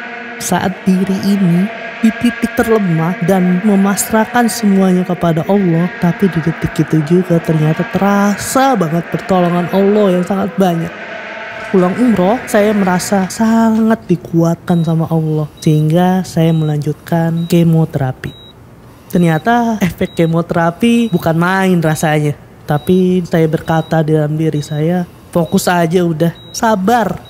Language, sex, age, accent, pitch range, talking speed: Indonesian, female, 20-39, native, 165-200 Hz, 110 wpm